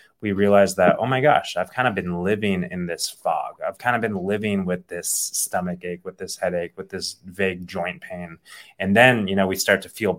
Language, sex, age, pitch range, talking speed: English, male, 20-39, 90-105 Hz, 230 wpm